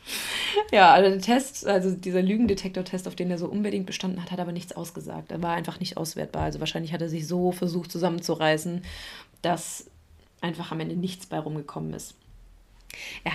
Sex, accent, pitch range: female, German, 180-240 Hz